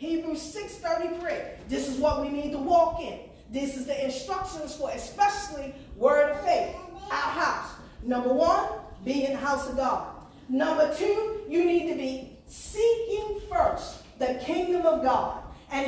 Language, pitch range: English, 295-385 Hz